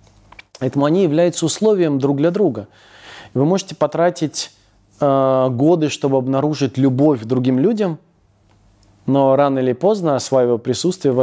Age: 20-39